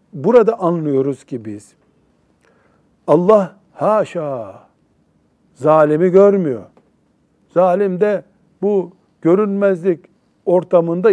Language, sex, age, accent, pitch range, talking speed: Turkish, male, 60-79, native, 170-230 Hz, 70 wpm